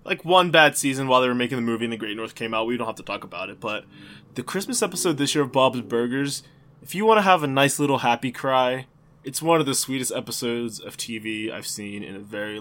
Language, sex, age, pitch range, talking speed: English, male, 20-39, 115-145 Hz, 260 wpm